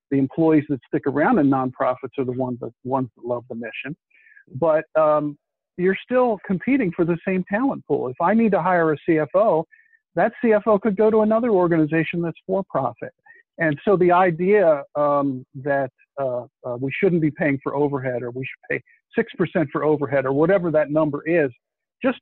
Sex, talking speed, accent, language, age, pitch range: male, 185 wpm, American, English, 50-69, 140-190 Hz